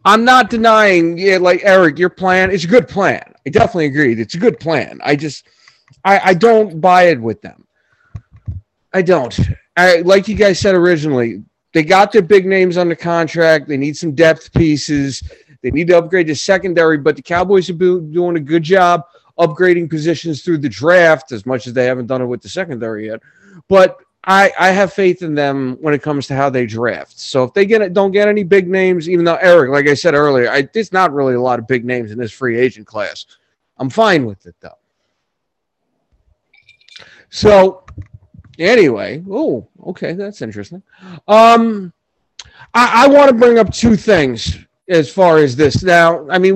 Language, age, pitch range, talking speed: English, 30-49, 140-190 Hz, 195 wpm